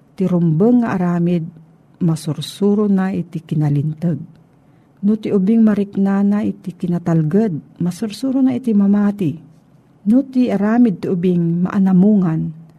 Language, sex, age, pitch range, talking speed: Filipino, female, 50-69, 155-200 Hz, 115 wpm